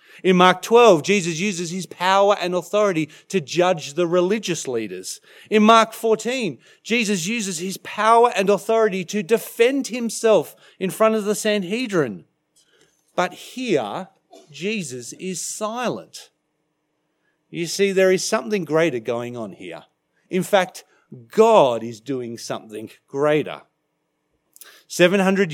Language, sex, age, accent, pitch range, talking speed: English, male, 40-59, Australian, 145-200 Hz, 125 wpm